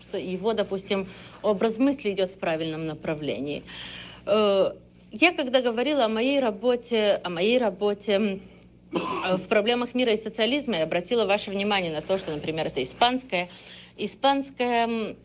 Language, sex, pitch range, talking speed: Russian, female, 180-235 Hz, 135 wpm